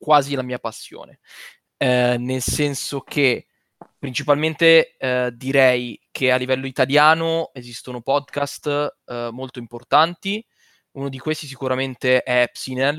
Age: 20-39